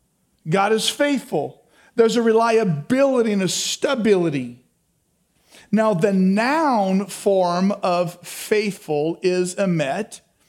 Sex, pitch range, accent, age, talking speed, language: male, 200-260 Hz, American, 40-59, 95 wpm, English